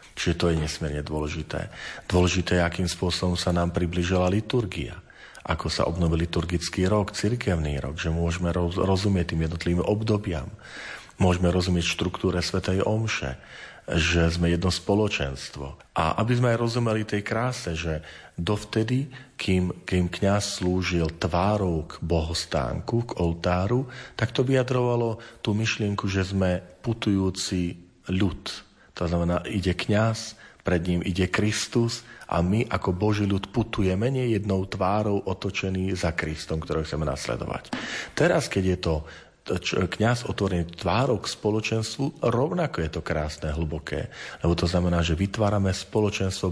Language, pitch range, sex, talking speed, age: Slovak, 85-105 Hz, male, 135 wpm, 40-59